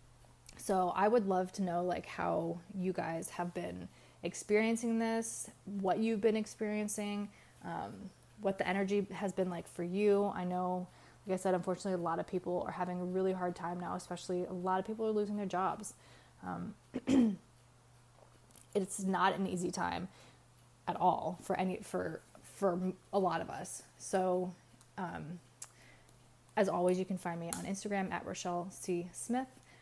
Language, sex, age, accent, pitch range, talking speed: English, female, 20-39, American, 175-210 Hz, 165 wpm